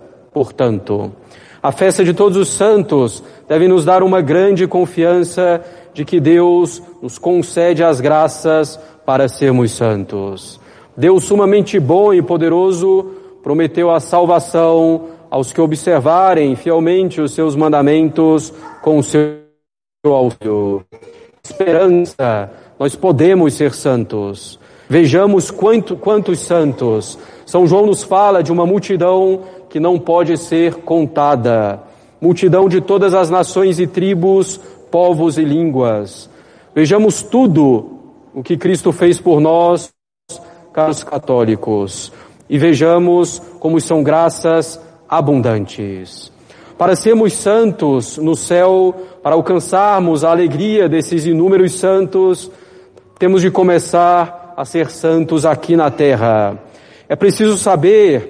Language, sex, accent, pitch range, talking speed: Portuguese, male, Brazilian, 150-185 Hz, 115 wpm